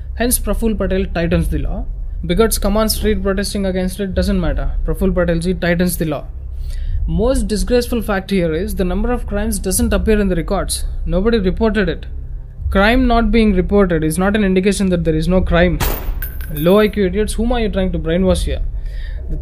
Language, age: English, 20-39